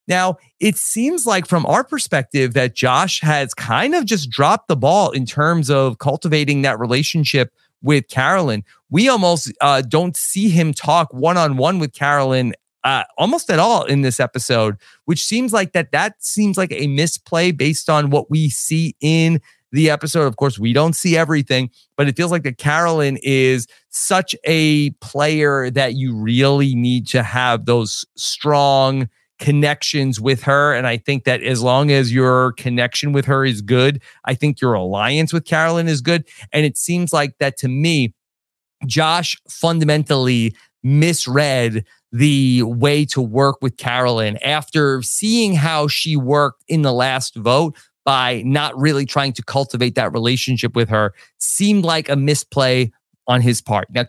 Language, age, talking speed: English, 30-49, 165 wpm